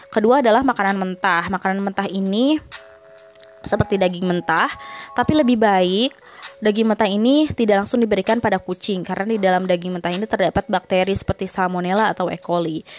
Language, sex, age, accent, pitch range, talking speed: Indonesian, female, 20-39, native, 185-225 Hz, 155 wpm